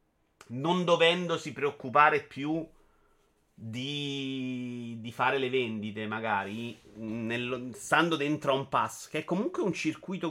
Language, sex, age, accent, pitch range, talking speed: Italian, male, 30-49, native, 130-165 Hz, 120 wpm